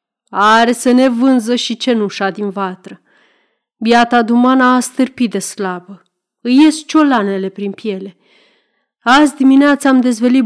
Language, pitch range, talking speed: Romanian, 200-280 Hz, 130 wpm